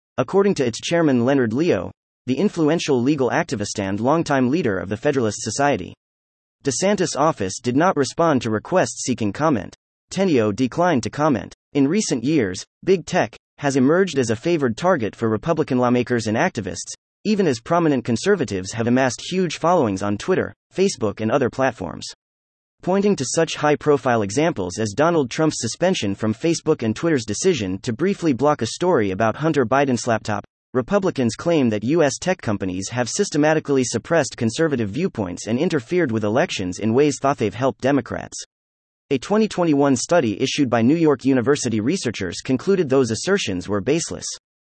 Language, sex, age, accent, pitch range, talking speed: English, male, 30-49, American, 110-160 Hz, 160 wpm